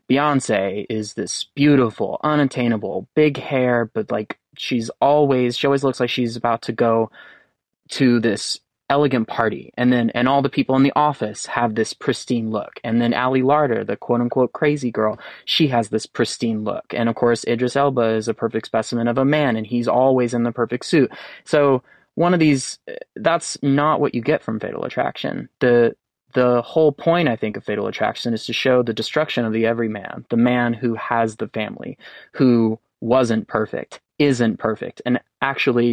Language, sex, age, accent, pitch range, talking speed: English, male, 20-39, American, 115-135 Hz, 185 wpm